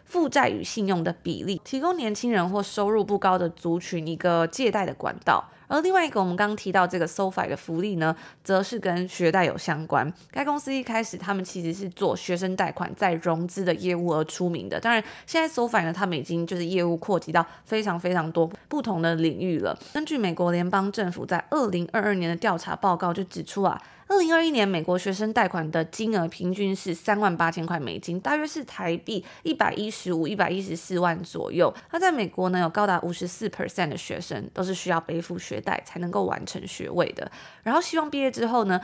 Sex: female